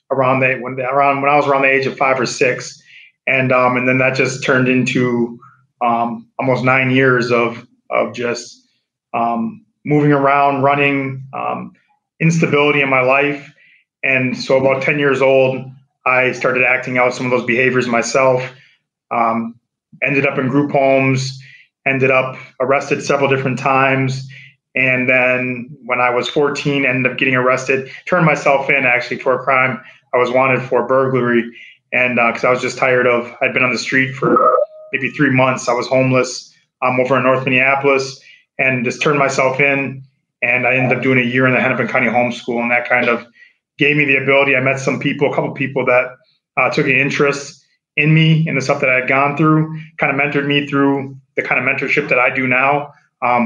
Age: 30-49